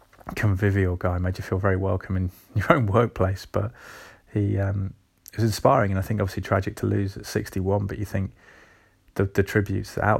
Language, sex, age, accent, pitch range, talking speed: English, male, 20-39, British, 95-105 Hz, 190 wpm